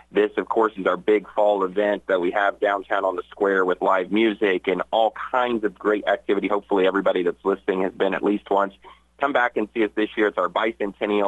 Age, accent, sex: 40-59, American, male